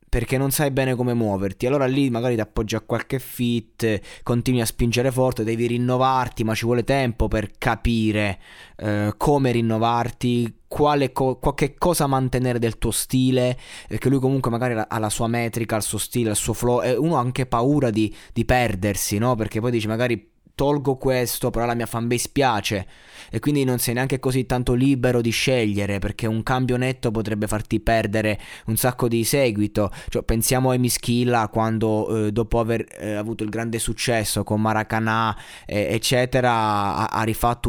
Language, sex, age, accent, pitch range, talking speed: Italian, male, 20-39, native, 110-125 Hz, 180 wpm